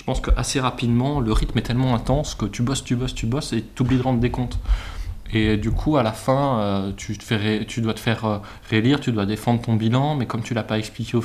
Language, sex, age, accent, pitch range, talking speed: French, male, 20-39, French, 105-120 Hz, 265 wpm